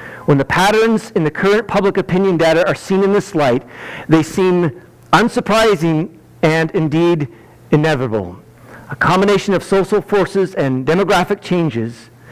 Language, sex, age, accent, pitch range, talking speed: English, male, 50-69, American, 145-195 Hz, 135 wpm